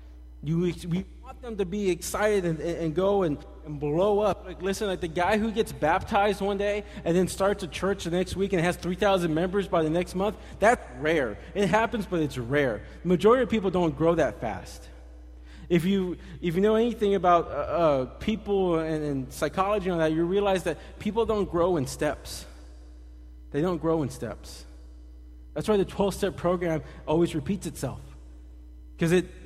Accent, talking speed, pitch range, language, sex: American, 195 wpm, 135-185 Hz, English, male